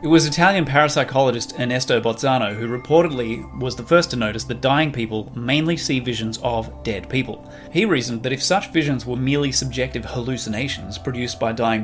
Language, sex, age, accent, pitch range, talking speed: English, male, 30-49, Australian, 115-135 Hz, 175 wpm